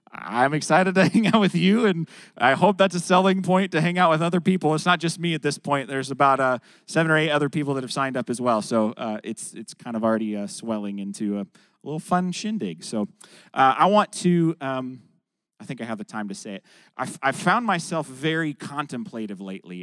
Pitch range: 110-155 Hz